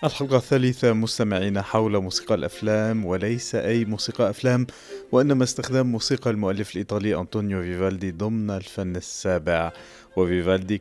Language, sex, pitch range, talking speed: Arabic, male, 95-120 Hz, 115 wpm